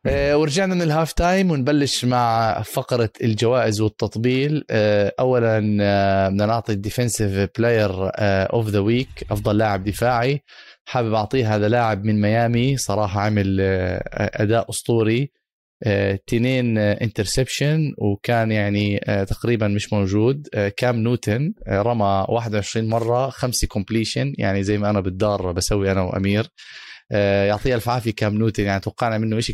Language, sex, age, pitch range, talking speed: Arabic, male, 20-39, 105-125 Hz, 135 wpm